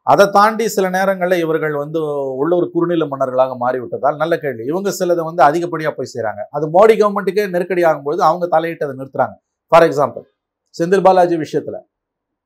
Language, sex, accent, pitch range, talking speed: Tamil, male, native, 140-180 Hz, 160 wpm